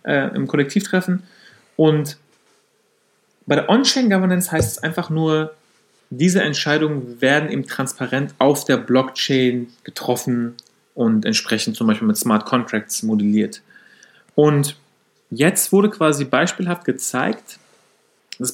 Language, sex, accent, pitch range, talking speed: German, male, German, 130-190 Hz, 115 wpm